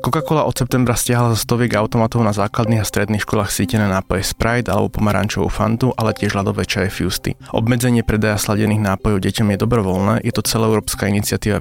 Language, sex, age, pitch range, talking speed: Slovak, male, 20-39, 100-120 Hz, 175 wpm